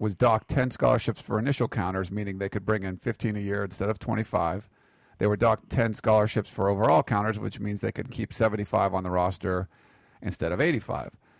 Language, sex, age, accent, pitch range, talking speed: English, male, 50-69, American, 100-115 Hz, 200 wpm